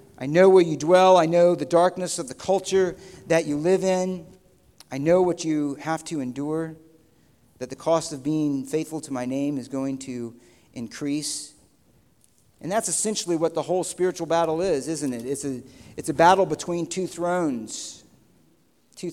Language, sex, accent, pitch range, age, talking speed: English, male, American, 160-210 Hz, 50-69, 175 wpm